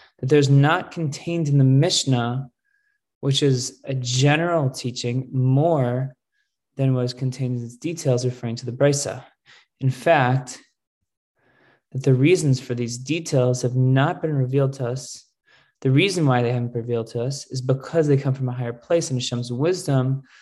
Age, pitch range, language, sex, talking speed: 20-39, 120-140 Hz, English, male, 170 wpm